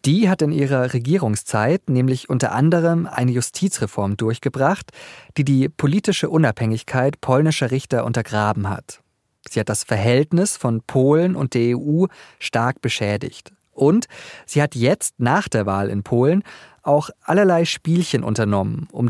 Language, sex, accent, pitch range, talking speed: German, male, German, 115-165 Hz, 140 wpm